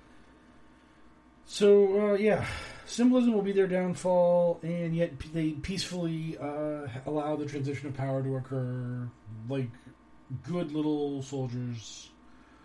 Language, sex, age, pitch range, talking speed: English, male, 40-59, 130-165 Hz, 115 wpm